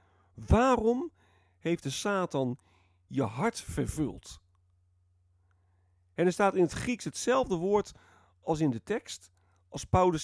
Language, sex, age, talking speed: Dutch, male, 40-59, 125 wpm